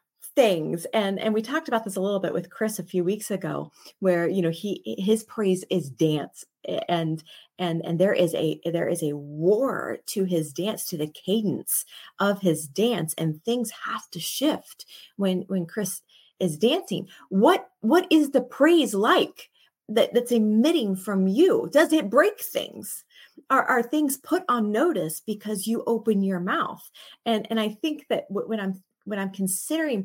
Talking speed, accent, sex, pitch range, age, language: 180 wpm, American, female, 185-240 Hz, 30-49, English